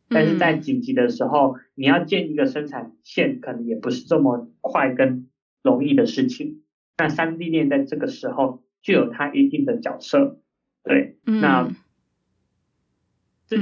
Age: 30-49